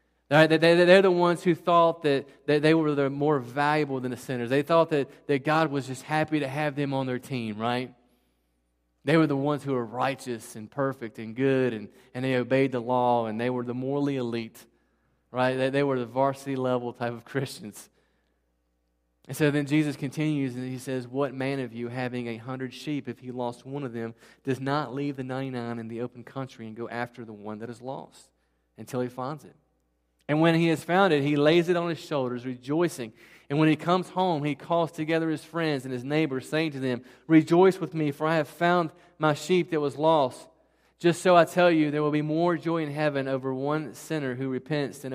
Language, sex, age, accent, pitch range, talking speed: English, male, 30-49, American, 120-160 Hz, 215 wpm